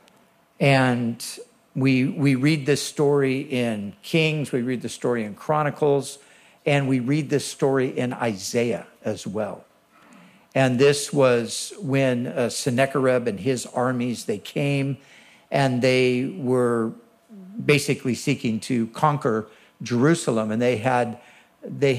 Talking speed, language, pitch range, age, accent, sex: 125 wpm, English, 125-155 Hz, 60-79, American, male